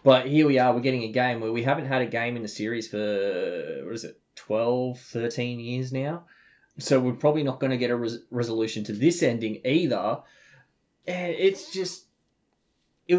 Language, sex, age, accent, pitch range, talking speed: English, male, 20-39, Australian, 115-140 Hz, 190 wpm